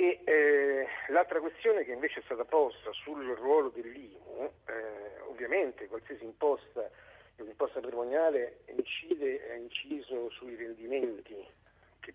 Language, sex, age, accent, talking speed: Italian, male, 50-69, native, 105 wpm